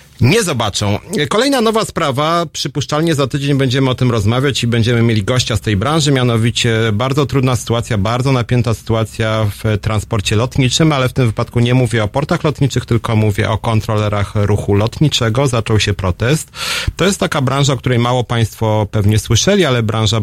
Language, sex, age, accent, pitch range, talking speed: Polish, male, 40-59, native, 105-130 Hz, 175 wpm